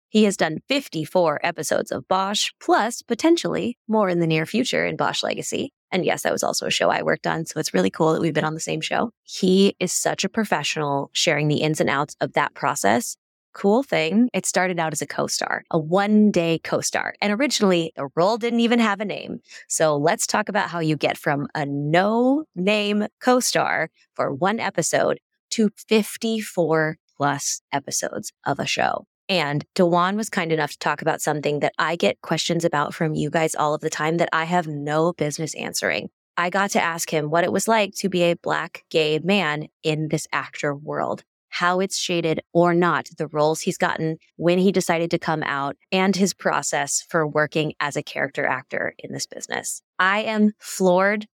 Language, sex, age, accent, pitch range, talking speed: English, female, 20-39, American, 155-195 Hz, 195 wpm